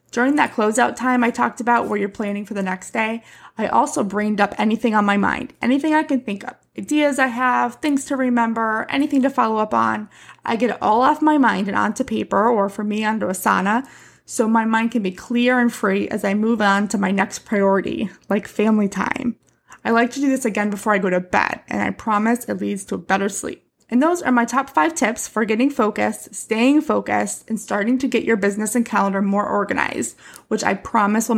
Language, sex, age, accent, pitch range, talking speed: English, female, 20-39, American, 205-255 Hz, 230 wpm